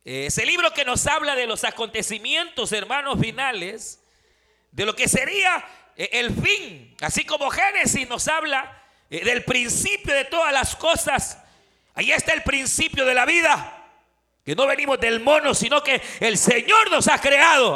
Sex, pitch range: male, 240-325 Hz